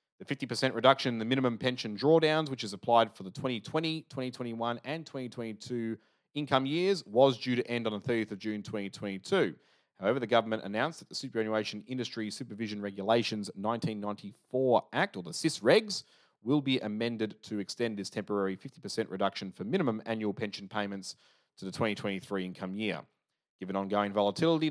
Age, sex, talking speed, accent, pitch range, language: 30-49, male, 165 wpm, Australian, 105-135 Hz, English